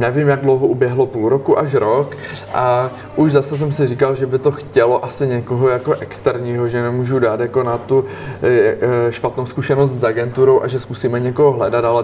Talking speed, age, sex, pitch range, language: 190 wpm, 20-39, male, 120-140 Hz, Czech